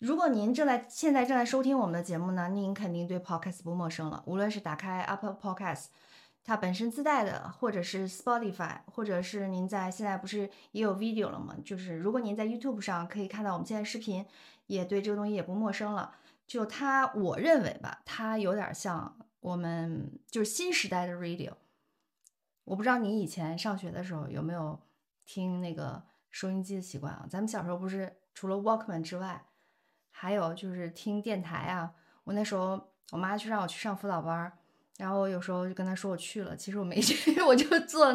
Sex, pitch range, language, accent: female, 180-220 Hz, Chinese, native